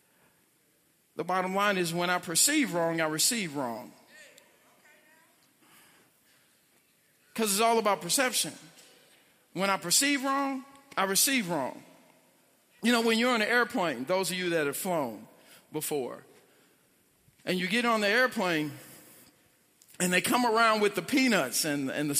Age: 50-69